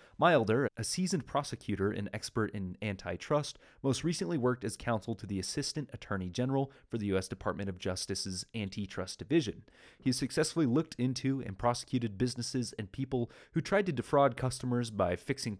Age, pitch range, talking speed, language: 30-49, 100-140 Hz, 165 wpm, English